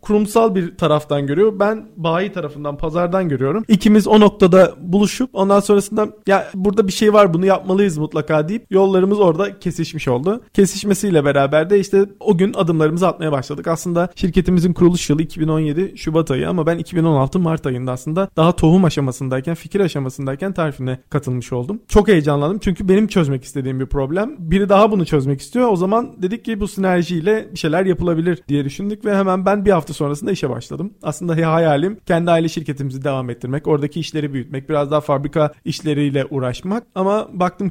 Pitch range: 150-200 Hz